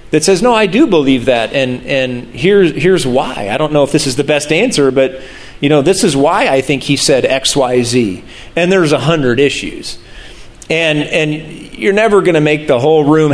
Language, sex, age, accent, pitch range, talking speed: English, male, 40-59, American, 130-160 Hz, 215 wpm